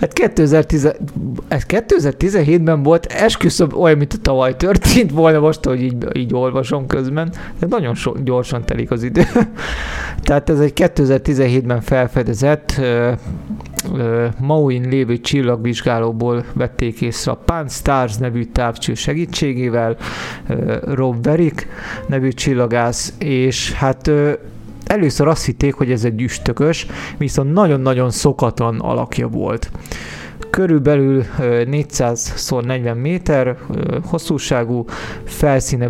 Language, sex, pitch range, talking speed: Hungarian, male, 120-150 Hz, 110 wpm